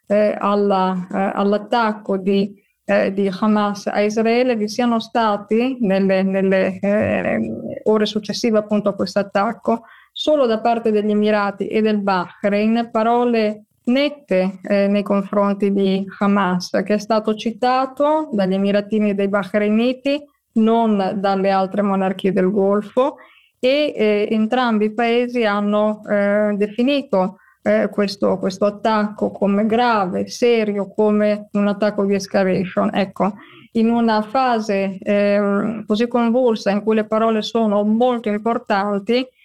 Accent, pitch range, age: native, 200-225 Hz, 20-39